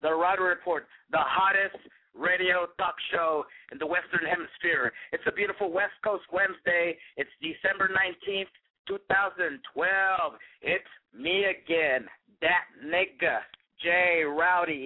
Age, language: 50-69, English